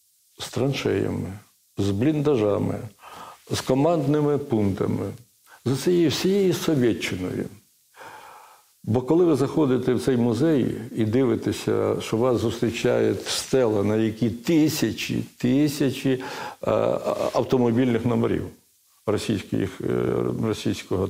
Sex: male